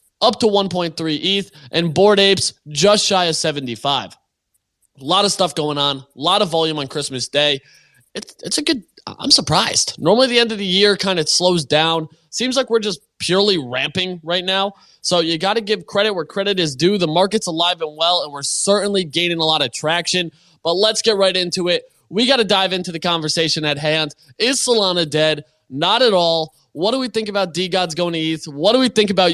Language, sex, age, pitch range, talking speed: English, male, 20-39, 155-200 Hz, 220 wpm